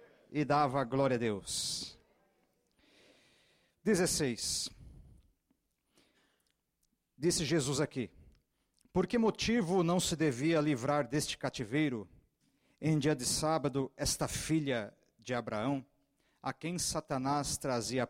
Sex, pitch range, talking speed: male, 130-180 Hz, 100 wpm